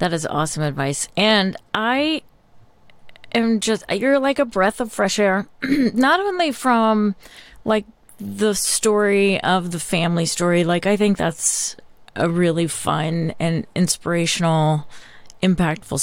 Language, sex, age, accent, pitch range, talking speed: English, female, 30-49, American, 170-210 Hz, 130 wpm